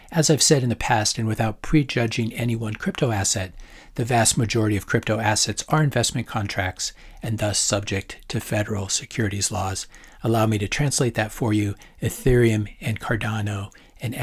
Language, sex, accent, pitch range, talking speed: English, male, American, 100-115 Hz, 170 wpm